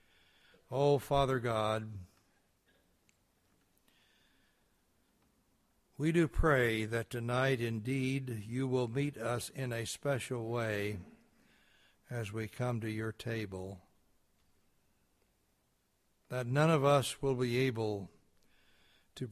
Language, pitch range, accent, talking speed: English, 100-130 Hz, American, 100 wpm